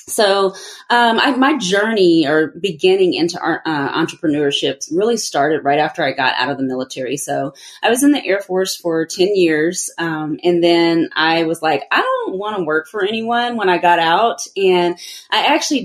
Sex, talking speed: female, 185 wpm